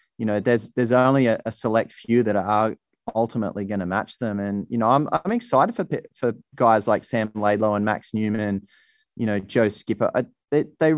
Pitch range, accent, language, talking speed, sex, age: 110-130 Hz, Australian, English, 200 wpm, male, 30-49